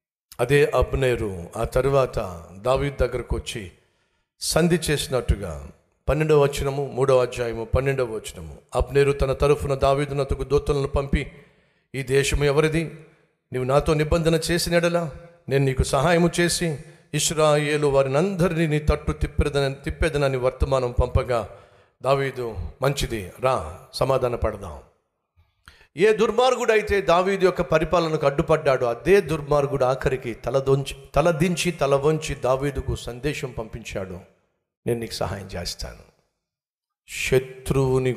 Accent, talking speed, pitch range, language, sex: native, 105 wpm, 125-170 Hz, Telugu, male